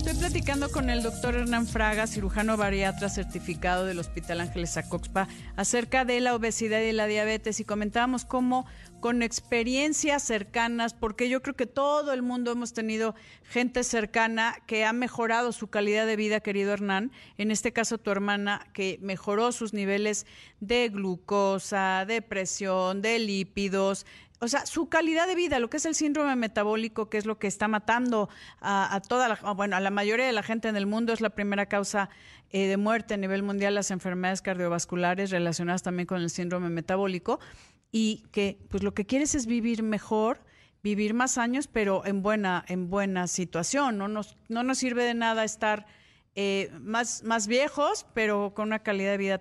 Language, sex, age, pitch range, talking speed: Spanish, female, 40-59, 195-235 Hz, 180 wpm